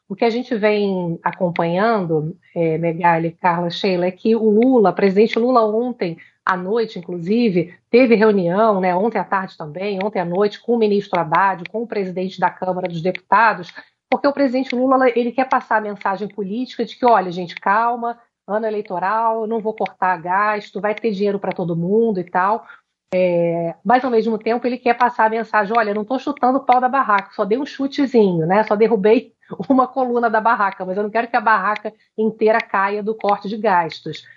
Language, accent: Portuguese, Brazilian